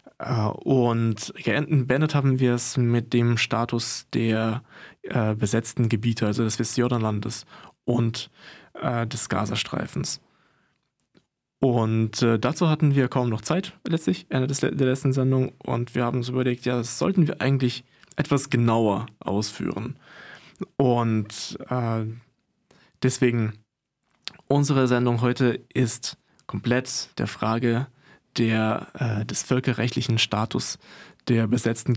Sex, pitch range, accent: male, 115-130 Hz, German